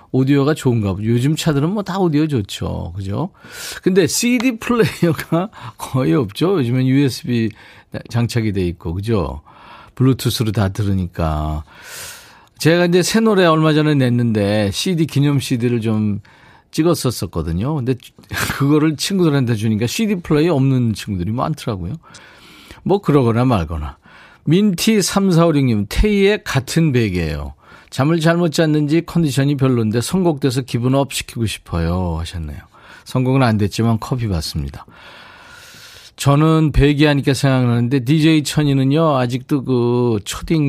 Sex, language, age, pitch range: male, Korean, 40-59, 105-155 Hz